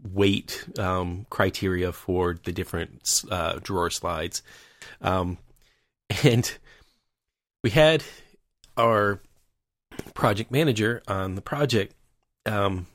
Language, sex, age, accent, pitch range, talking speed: English, male, 30-49, American, 90-115 Hz, 95 wpm